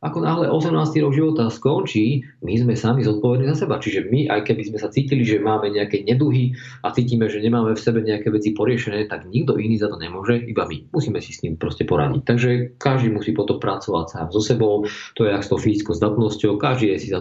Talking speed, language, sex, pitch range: 225 wpm, Slovak, male, 105-130 Hz